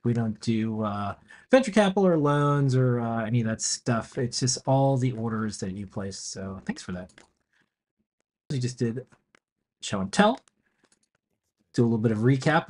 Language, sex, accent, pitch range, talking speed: English, male, American, 115-150 Hz, 180 wpm